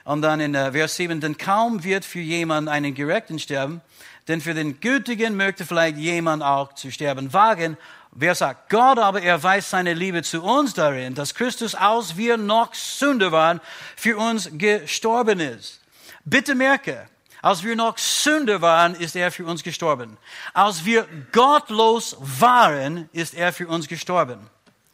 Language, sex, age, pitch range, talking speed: German, male, 60-79, 150-205 Hz, 160 wpm